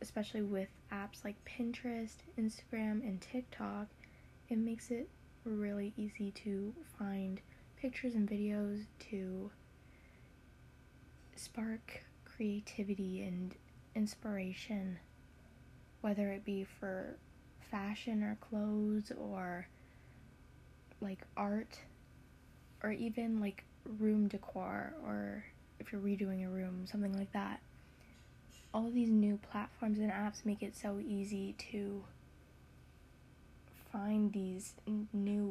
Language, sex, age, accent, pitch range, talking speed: English, female, 10-29, American, 190-215 Hz, 105 wpm